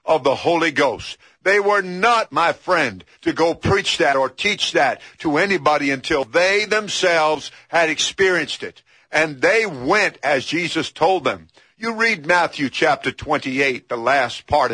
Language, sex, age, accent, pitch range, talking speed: English, male, 50-69, American, 150-190 Hz, 160 wpm